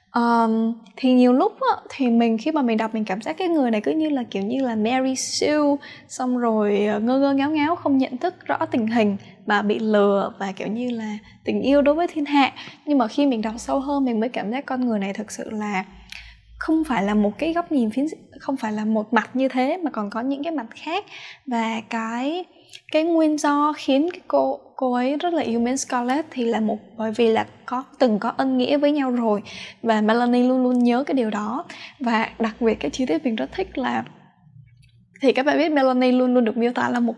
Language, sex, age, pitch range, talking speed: Vietnamese, female, 10-29, 225-285 Hz, 235 wpm